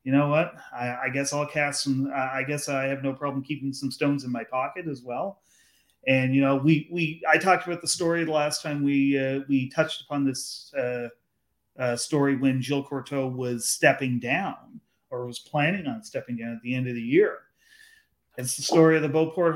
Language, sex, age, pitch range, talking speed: English, male, 30-49, 125-145 Hz, 210 wpm